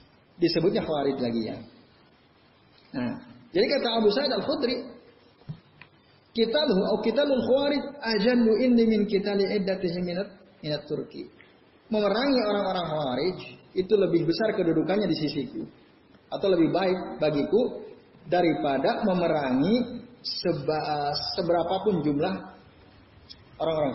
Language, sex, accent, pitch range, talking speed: Indonesian, male, native, 160-225 Hz, 90 wpm